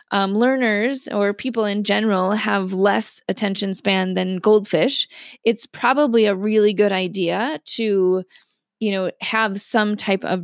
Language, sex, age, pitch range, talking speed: English, female, 20-39, 195-235 Hz, 145 wpm